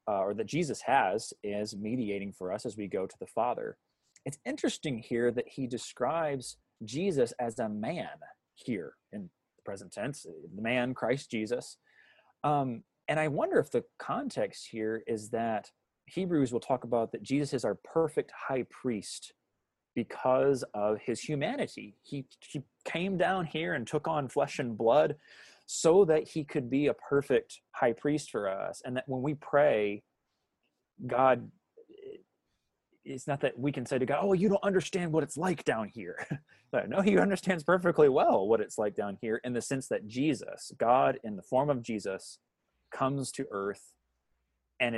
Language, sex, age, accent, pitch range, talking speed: English, male, 20-39, American, 115-155 Hz, 175 wpm